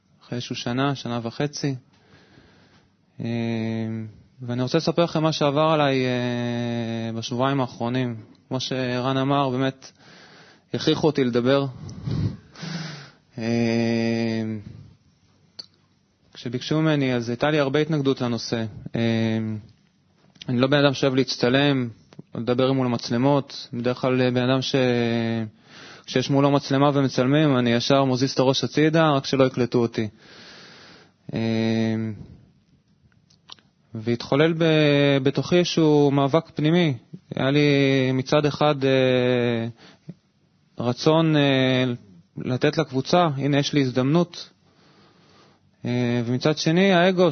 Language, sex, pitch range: Hebrew, male, 120-150 Hz